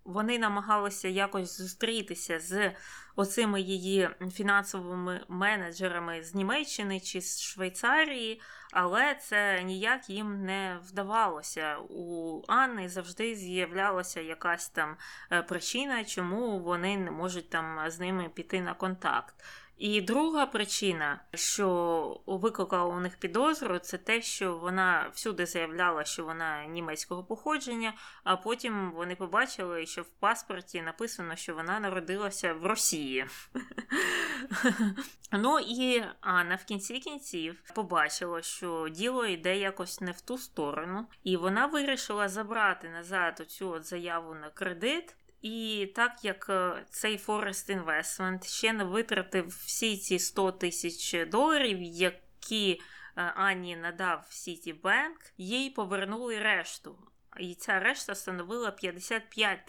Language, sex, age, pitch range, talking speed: Ukrainian, female, 20-39, 175-220 Hz, 120 wpm